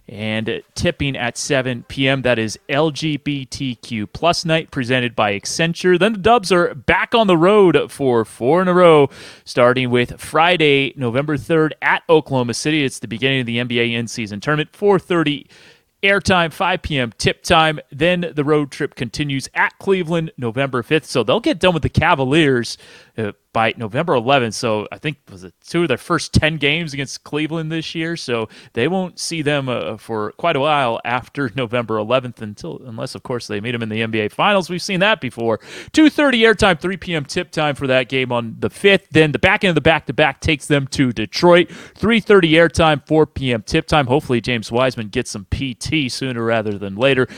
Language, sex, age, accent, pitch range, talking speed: English, male, 30-49, American, 120-165 Hz, 190 wpm